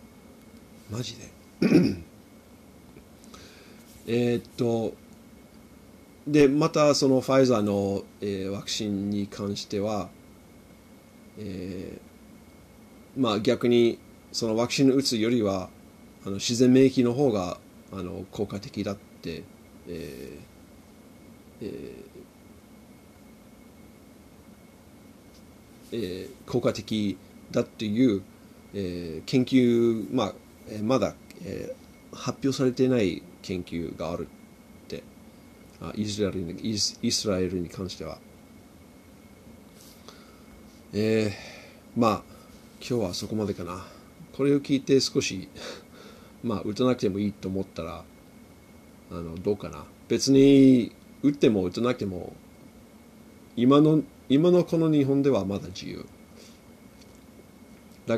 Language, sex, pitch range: Japanese, male, 100-130 Hz